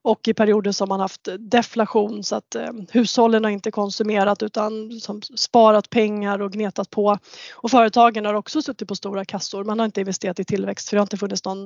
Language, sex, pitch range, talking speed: Swedish, female, 200-225 Hz, 210 wpm